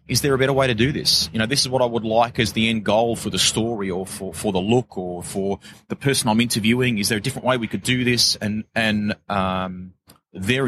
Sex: male